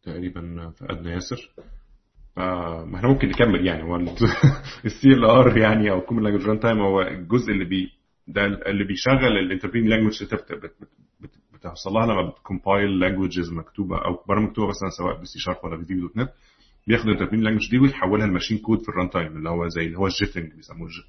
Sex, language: male, Arabic